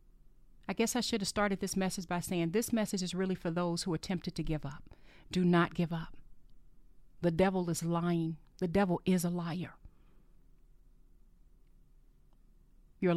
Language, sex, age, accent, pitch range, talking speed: English, female, 40-59, American, 175-215 Hz, 165 wpm